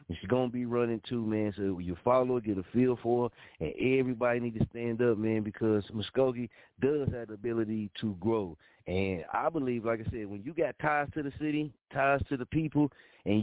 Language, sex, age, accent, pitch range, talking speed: English, male, 30-49, American, 105-125 Hz, 215 wpm